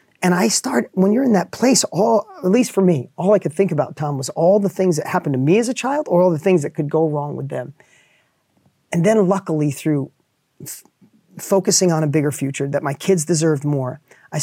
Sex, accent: male, American